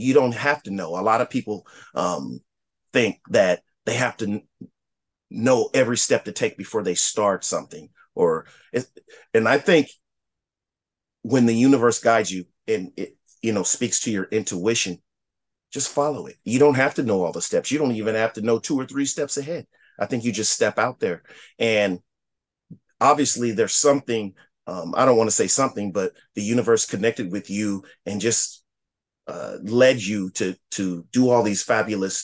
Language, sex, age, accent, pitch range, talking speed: English, male, 30-49, American, 100-145 Hz, 185 wpm